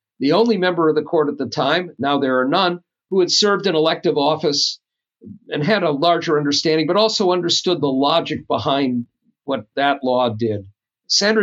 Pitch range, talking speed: 130-170 Hz, 185 wpm